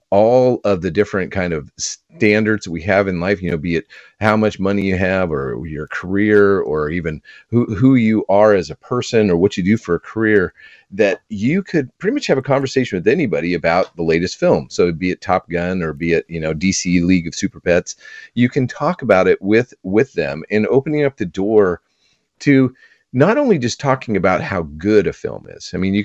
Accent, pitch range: American, 90-120 Hz